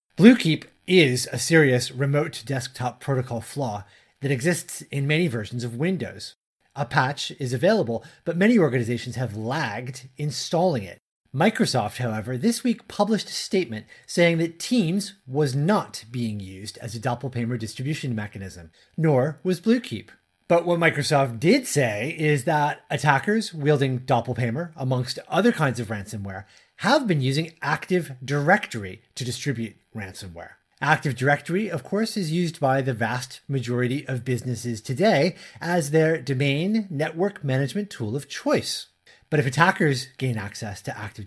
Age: 30-49